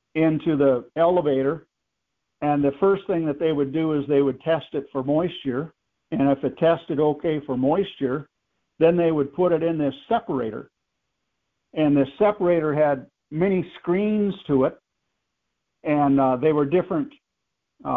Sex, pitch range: male, 140-175 Hz